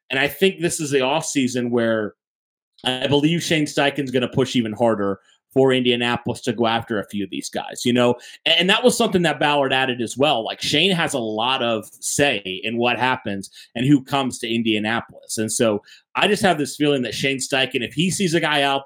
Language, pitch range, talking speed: English, 120-155 Hz, 220 wpm